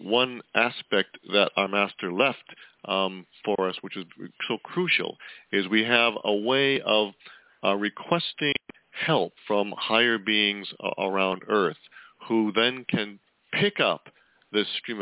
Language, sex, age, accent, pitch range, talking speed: English, male, 50-69, American, 100-130 Hz, 140 wpm